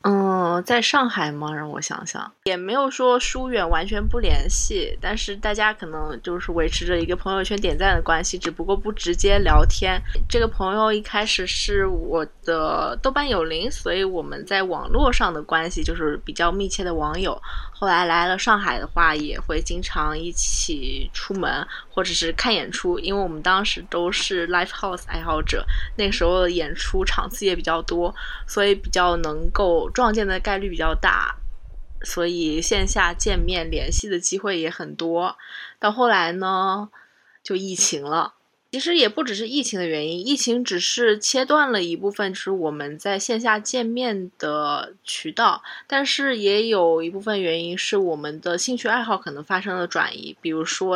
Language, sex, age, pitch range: Chinese, female, 20-39, 170-215 Hz